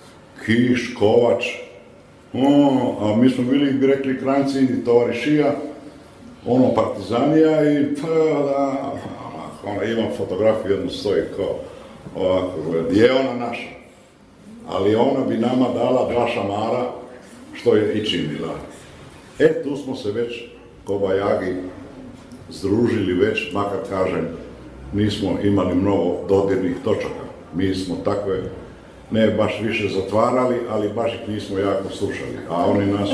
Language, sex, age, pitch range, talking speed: English, male, 50-69, 95-125 Hz, 125 wpm